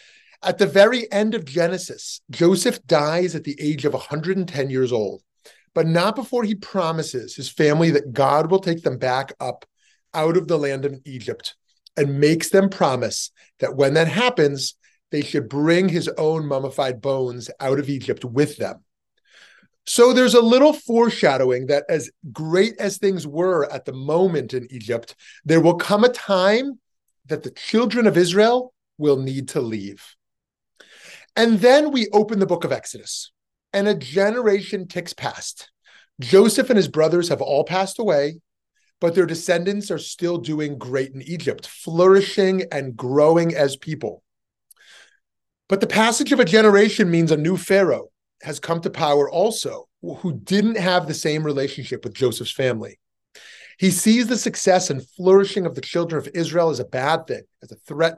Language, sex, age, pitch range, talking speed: English, male, 30-49, 145-205 Hz, 165 wpm